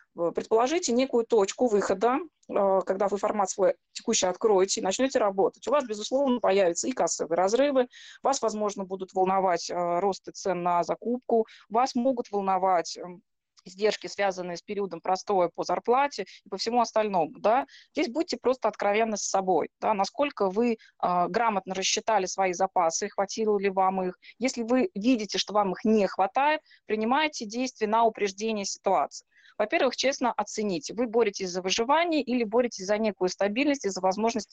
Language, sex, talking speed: Russian, female, 150 wpm